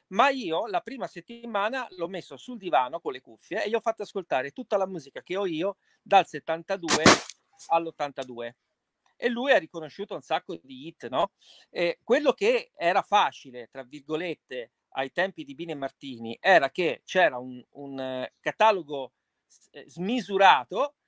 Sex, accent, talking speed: male, native, 150 wpm